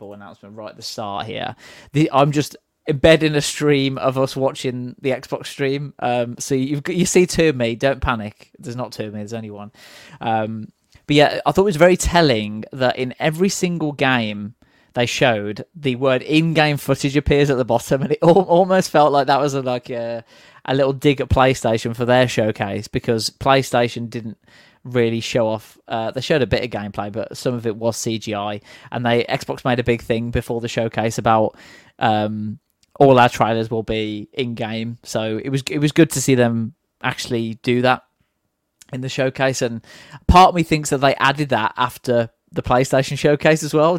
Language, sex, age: English, male, 20-39